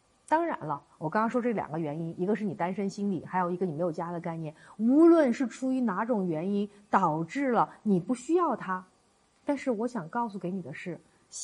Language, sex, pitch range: Chinese, female, 180-275 Hz